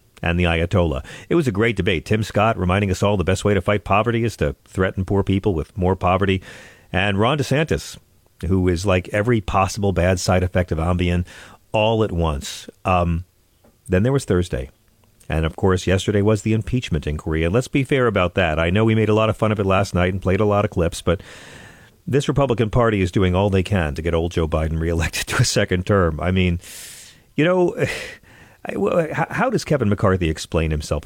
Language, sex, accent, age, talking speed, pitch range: English, male, American, 40-59, 210 wpm, 90-115 Hz